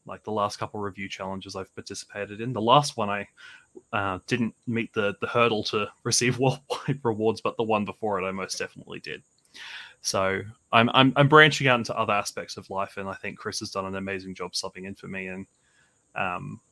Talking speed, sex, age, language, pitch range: 210 wpm, male, 20-39, English, 100-115 Hz